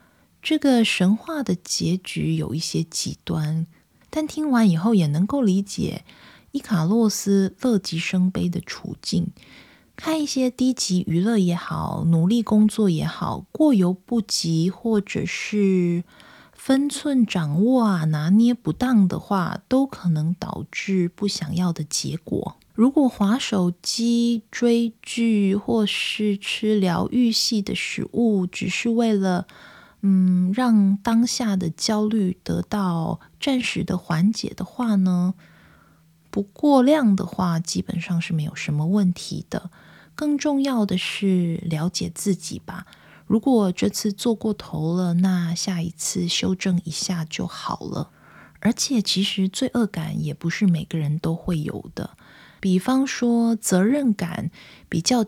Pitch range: 175-230 Hz